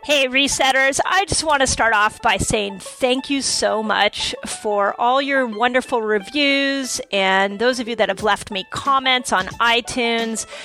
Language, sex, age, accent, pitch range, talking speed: English, female, 40-59, American, 205-250 Hz, 170 wpm